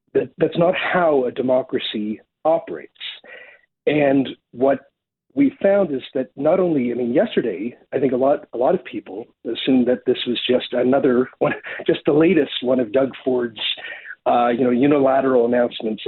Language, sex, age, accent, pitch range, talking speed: English, male, 50-69, American, 125-195 Hz, 155 wpm